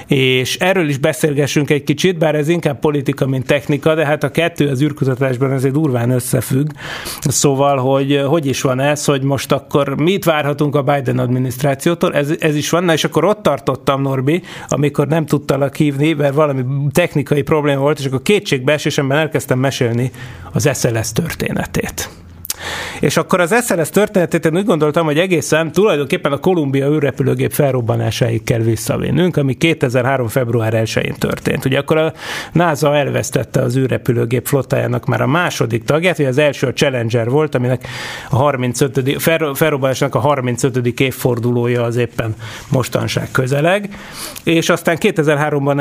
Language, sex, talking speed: Hungarian, male, 150 wpm